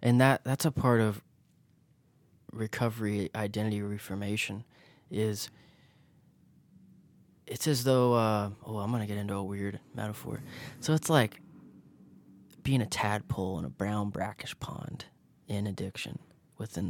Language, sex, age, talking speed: English, male, 20-39, 130 wpm